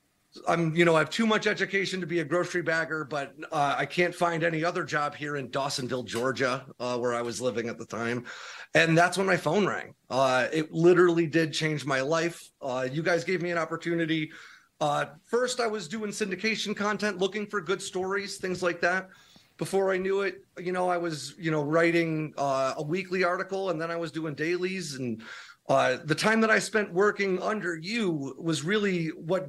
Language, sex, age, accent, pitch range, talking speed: English, male, 30-49, American, 150-190 Hz, 205 wpm